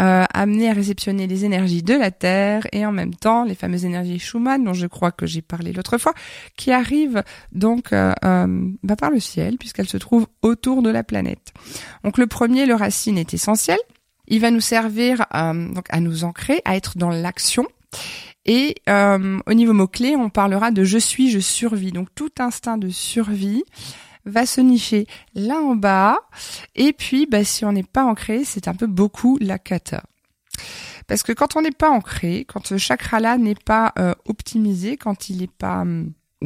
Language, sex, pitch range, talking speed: French, female, 185-235 Hz, 195 wpm